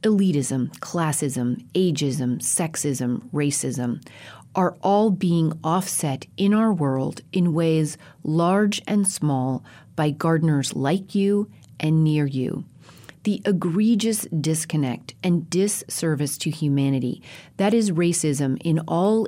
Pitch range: 145-185 Hz